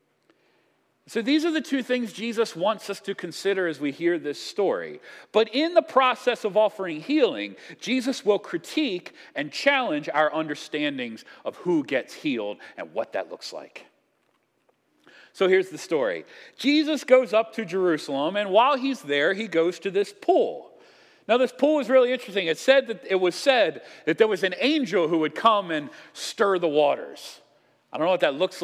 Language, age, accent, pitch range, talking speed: English, 40-59, American, 175-275 Hz, 180 wpm